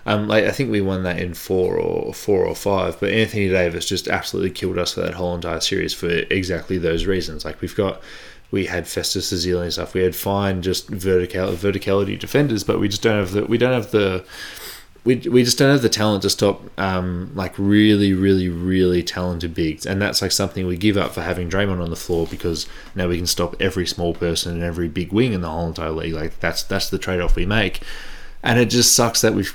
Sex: male